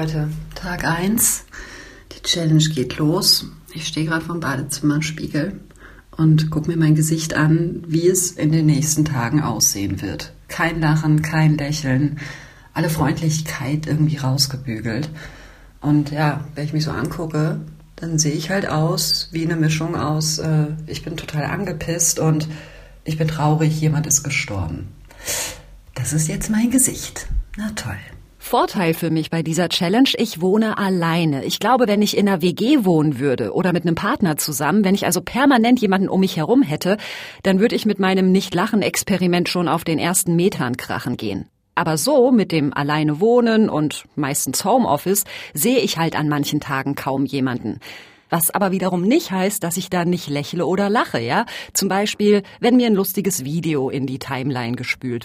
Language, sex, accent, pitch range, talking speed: German, female, German, 150-185 Hz, 165 wpm